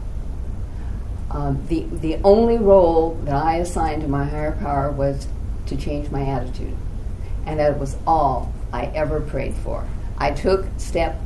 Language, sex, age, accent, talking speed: English, female, 50-69, American, 150 wpm